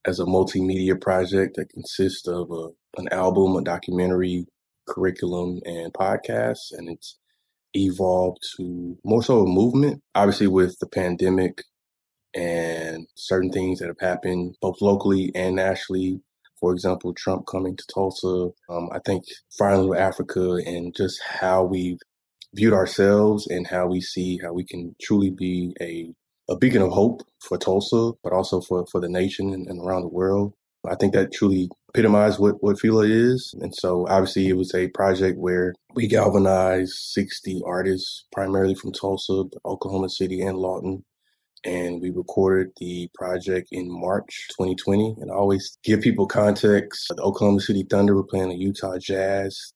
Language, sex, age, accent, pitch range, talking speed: English, male, 20-39, American, 90-100 Hz, 160 wpm